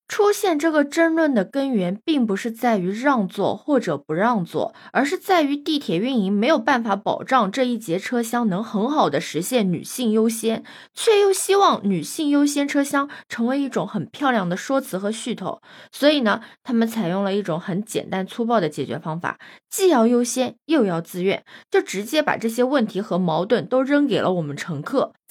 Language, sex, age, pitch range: Chinese, female, 20-39, 200-290 Hz